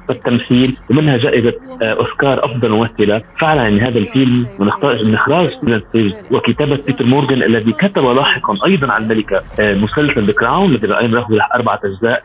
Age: 30-49